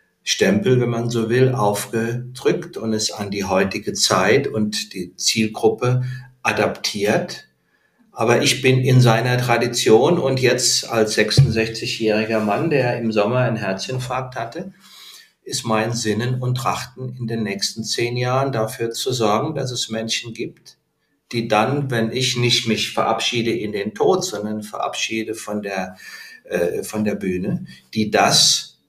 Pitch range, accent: 110-135 Hz, German